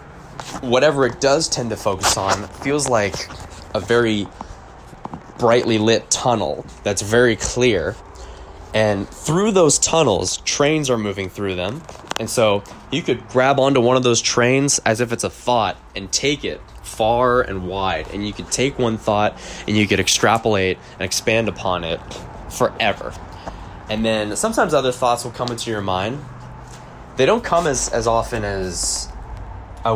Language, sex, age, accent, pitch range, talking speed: English, male, 10-29, American, 95-125 Hz, 160 wpm